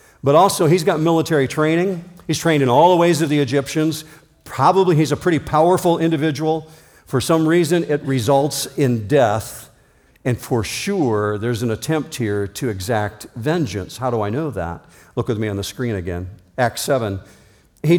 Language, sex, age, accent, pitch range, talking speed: English, male, 50-69, American, 105-155 Hz, 175 wpm